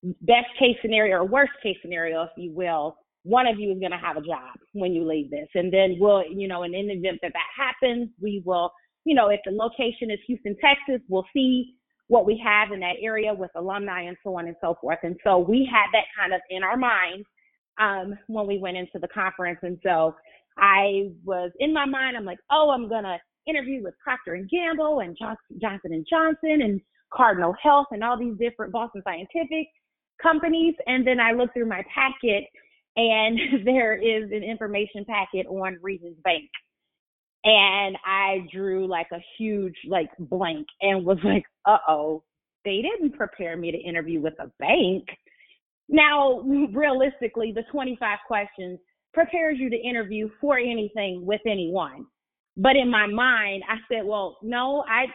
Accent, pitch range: American, 185-250 Hz